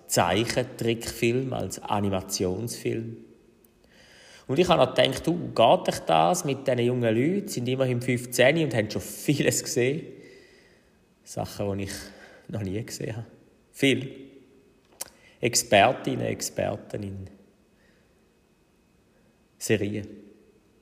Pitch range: 105-125 Hz